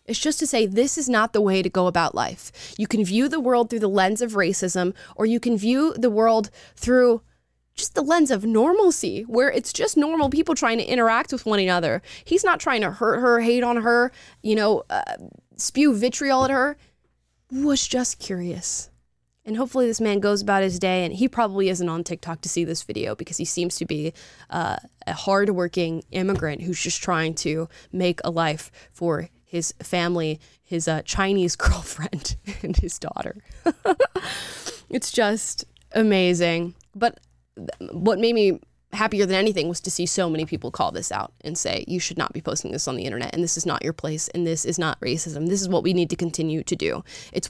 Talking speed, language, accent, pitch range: 200 wpm, English, American, 170-230 Hz